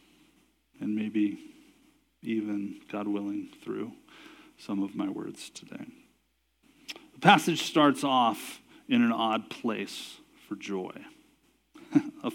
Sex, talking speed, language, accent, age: male, 105 wpm, English, American, 40-59